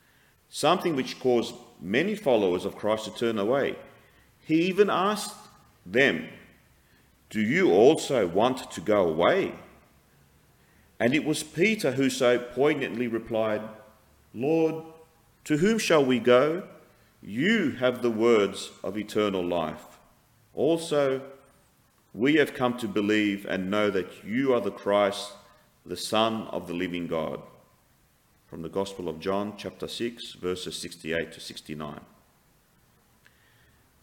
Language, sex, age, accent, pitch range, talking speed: English, male, 40-59, Australian, 100-145 Hz, 125 wpm